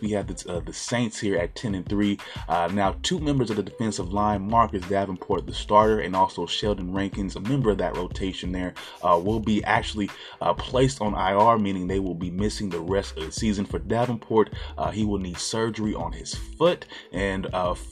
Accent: American